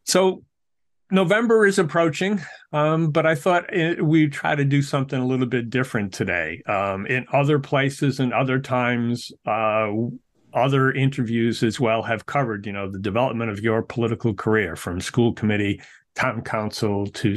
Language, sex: English, male